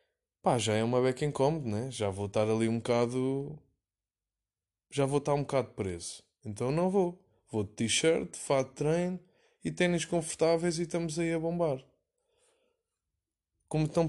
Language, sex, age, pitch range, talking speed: Portuguese, male, 20-39, 115-155 Hz, 160 wpm